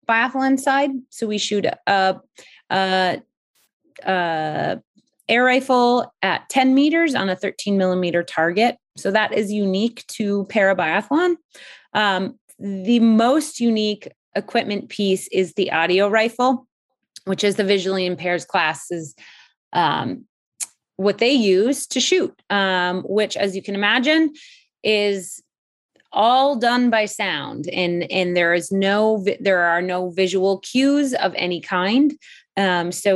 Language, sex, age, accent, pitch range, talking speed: English, female, 30-49, American, 185-240 Hz, 130 wpm